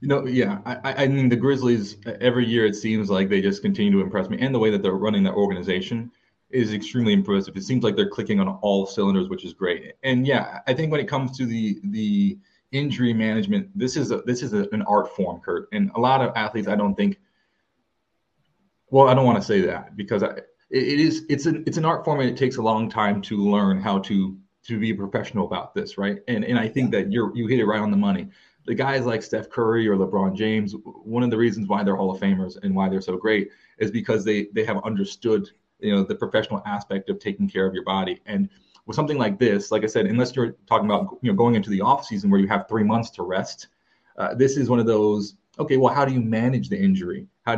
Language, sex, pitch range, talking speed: English, male, 105-155 Hz, 250 wpm